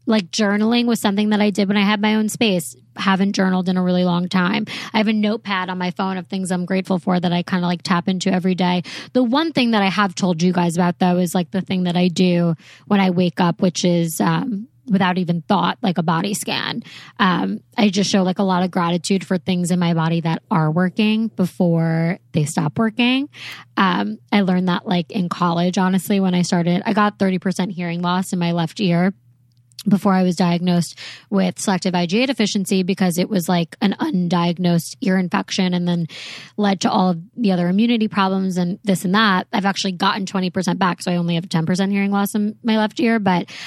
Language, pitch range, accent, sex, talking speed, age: English, 175-205 Hz, American, female, 220 wpm, 20-39